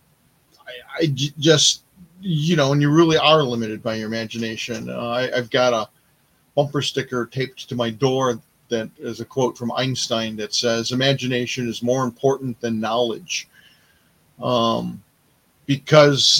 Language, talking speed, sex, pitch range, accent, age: English, 140 wpm, male, 120-150 Hz, American, 40-59